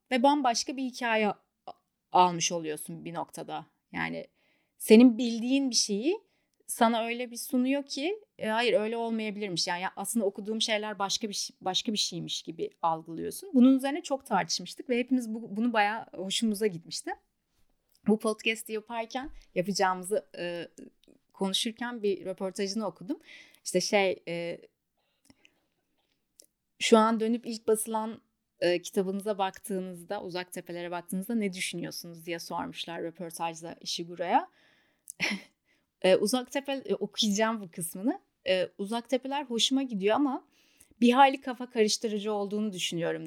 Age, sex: 30-49, female